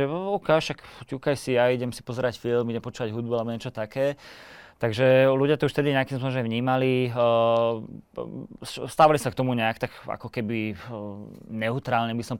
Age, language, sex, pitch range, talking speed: 20-39, Slovak, male, 110-125 Hz, 180 wpm